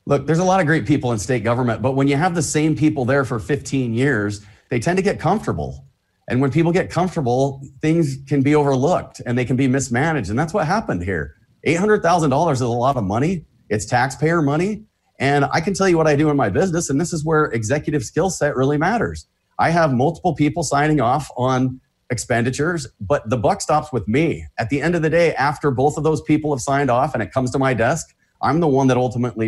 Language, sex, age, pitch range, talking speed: English, male, 30-49, 125-155 Hz, 230 wpm